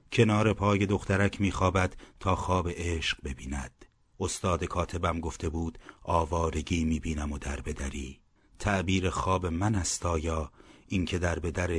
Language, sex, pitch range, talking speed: Persian, male, 80-100 Hz, 115 wpm